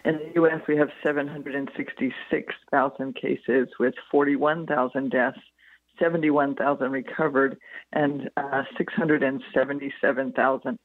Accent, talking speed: American, 85 wpm